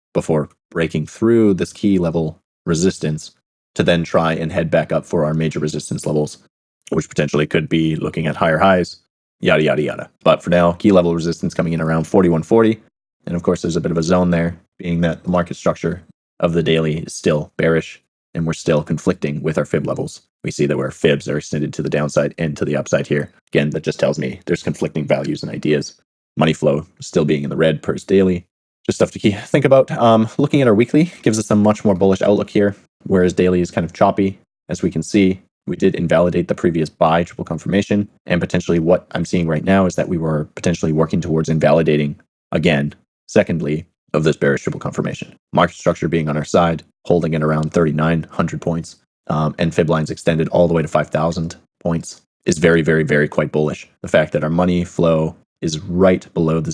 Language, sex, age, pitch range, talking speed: English, male, 30-49, 80-95 Hz, 210 wpm